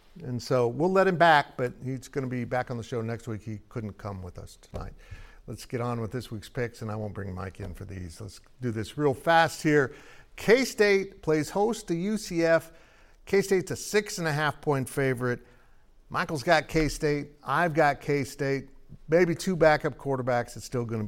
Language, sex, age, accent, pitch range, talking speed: English, male, 50-69, American, 115-165 Hz, 200 wpm